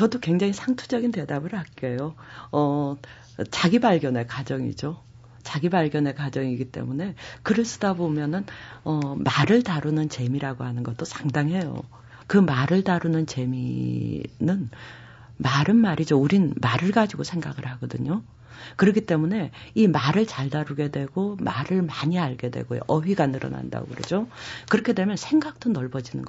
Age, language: 40-59, Korean